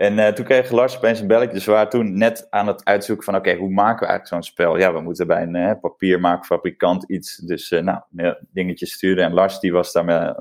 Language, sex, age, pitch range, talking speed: Dutch, male, 20-39, 90-115 Hz, 255 wpm